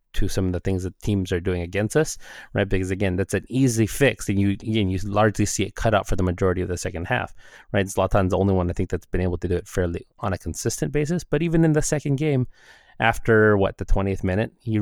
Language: English